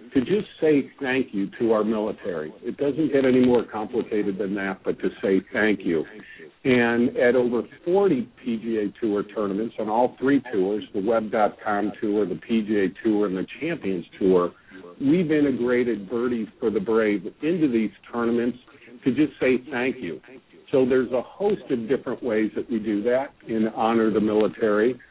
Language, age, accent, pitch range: English, 50-69, American, 105-125 Hz